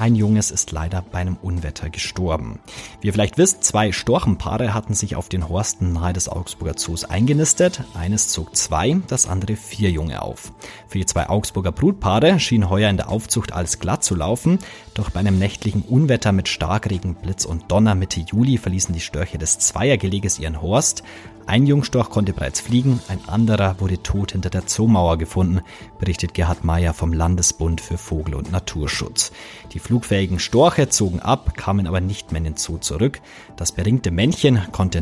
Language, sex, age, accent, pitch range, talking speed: German, male, 30-49, German, 90-110 Hz, 180 wpm